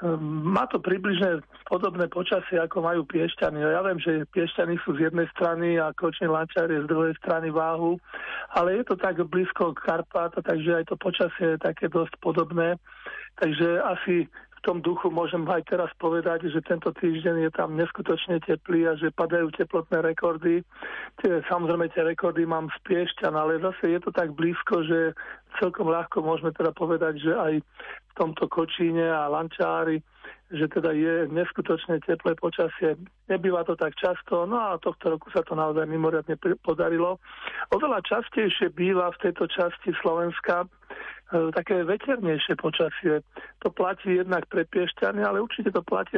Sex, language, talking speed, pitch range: male, Slovak, 160 wpm, 165-180 Hz